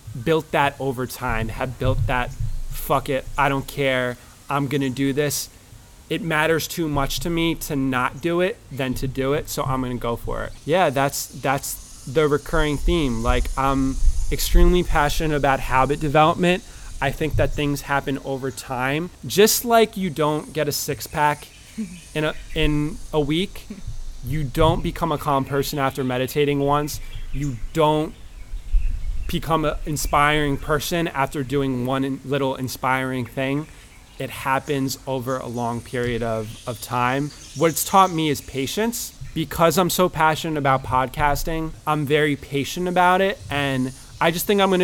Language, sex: Filipino, male